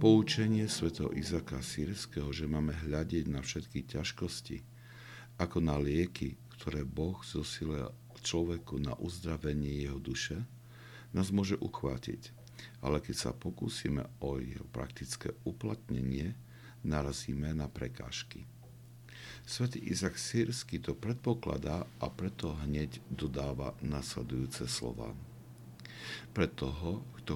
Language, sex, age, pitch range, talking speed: Slovak, male, 60-79, 70-105 Hz, 105 wpm